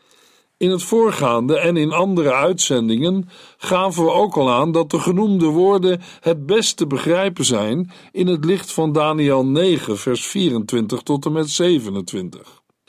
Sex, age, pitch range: male, 50-69, 145-190 Hz